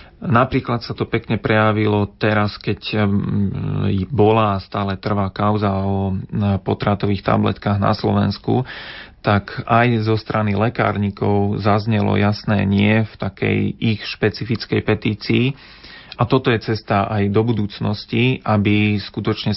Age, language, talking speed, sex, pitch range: 40-59, Slovak, 115 wpm, male, 100-115 Hz